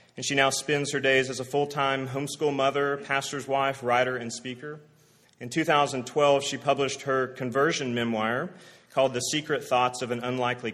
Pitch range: 130-160 Hz